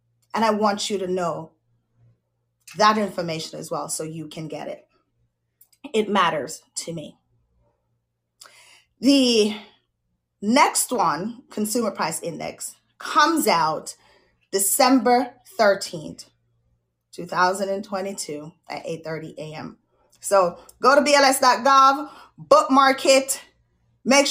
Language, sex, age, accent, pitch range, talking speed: English, female, 20-39, American, 165-235 Hz, 100 wpm